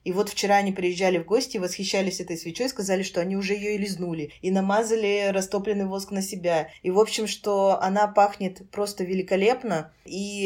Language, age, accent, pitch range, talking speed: Russian, 20-39, native, 175-205 Hz, 190 wpm